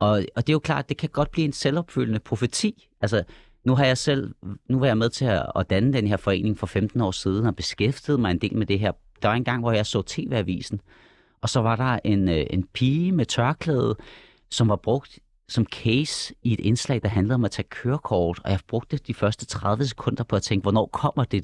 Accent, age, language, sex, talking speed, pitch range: native, 40-59, Danish, male, 235 wpm, 95-125 Hz